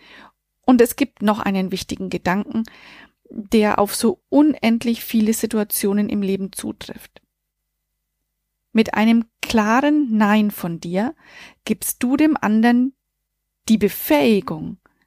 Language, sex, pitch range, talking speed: German, female, 205-245 Hz, 110 wpm